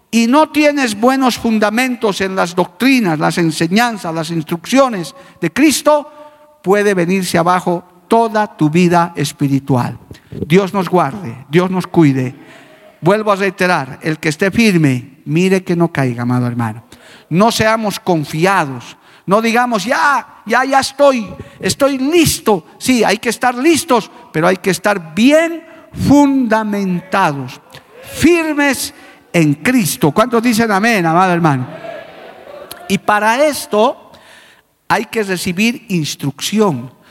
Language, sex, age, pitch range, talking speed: Spanish, male, 50-69, 170-230 Hz, 125 wpm